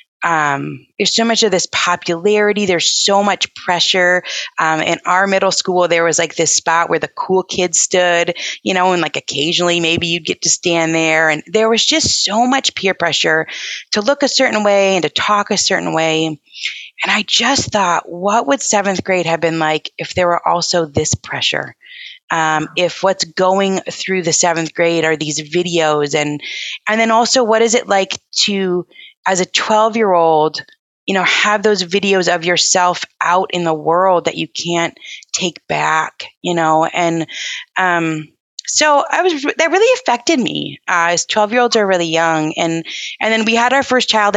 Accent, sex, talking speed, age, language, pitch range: American, female, 185 wpm, 20-39, English, 160-205 Hz